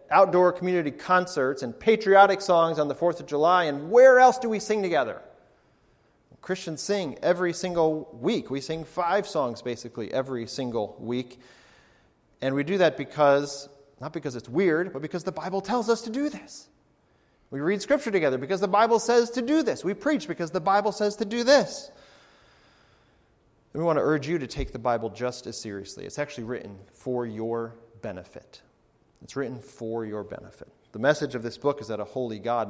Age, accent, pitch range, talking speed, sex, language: 30-49, American, 120-190 Hz, 185 wpm, male, English